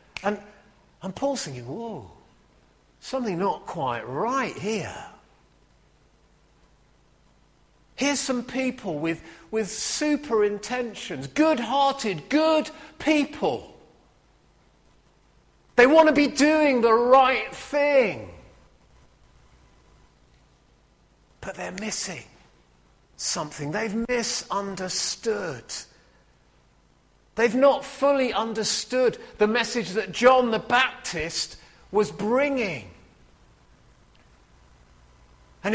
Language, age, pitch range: English, 40-59, 185-255 Hz